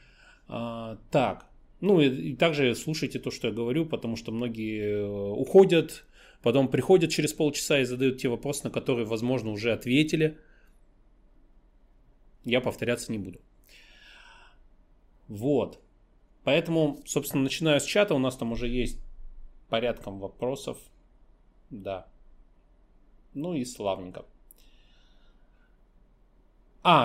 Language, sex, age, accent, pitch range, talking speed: Russian, male, 30-49, native, 115-140 Hz, 110 wpm